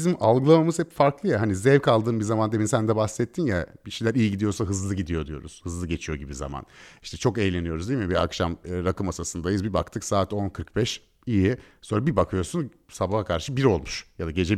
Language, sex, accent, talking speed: Turkish, male, native, 205 wpm